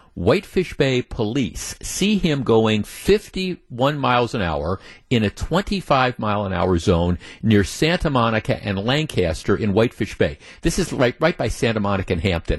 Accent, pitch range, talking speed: American, 110-150 Hz, 170 wpm